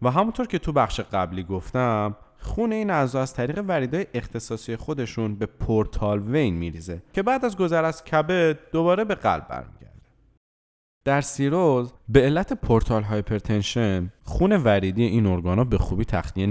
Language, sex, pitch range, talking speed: Persian, male, 100-140 Hz, 160 wpm